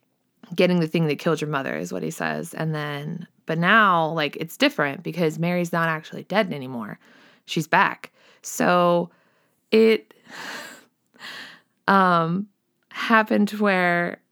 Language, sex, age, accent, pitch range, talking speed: English, female, 20-39, American, 145-175 Hz, 130 wpm